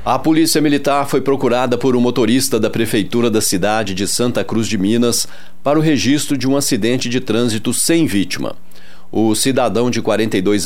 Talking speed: 175 wpm